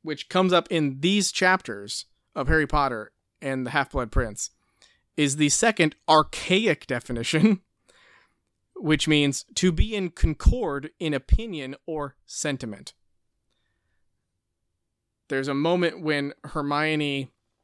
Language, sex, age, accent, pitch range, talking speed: English, male, 20-39, American, 125-165 Hz, 110 wpm